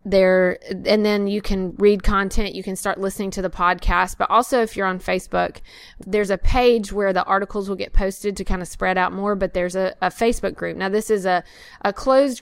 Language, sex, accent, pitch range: English, female, American, 175-200 Hz